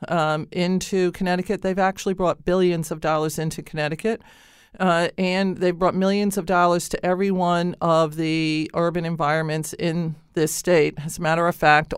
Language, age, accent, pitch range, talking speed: English, 50-69, American, 160-185 Hz, 160 wpm